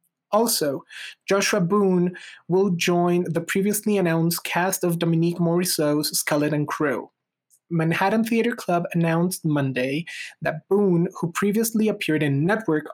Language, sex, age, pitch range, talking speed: English, male, 30-49, 160-190 Hz, 125 wpm